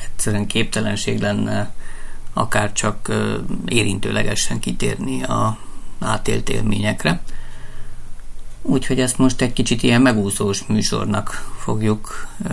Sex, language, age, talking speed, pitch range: male, Hungarian, 50-69, 85 wpm, 105-120 Hz